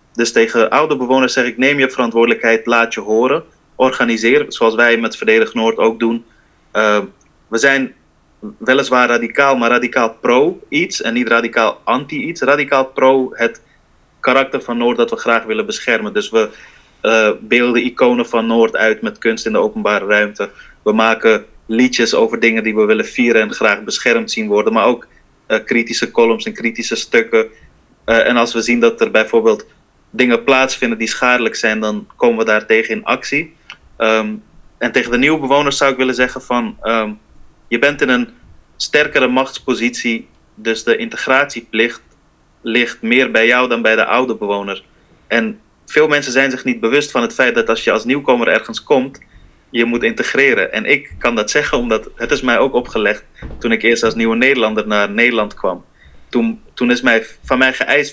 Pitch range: 115-130 Hz